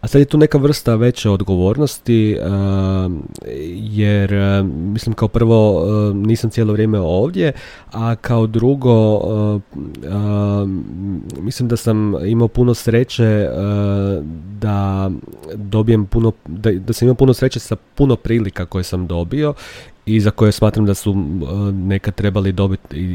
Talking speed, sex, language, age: 135 wpm, male, Croatian, 30-49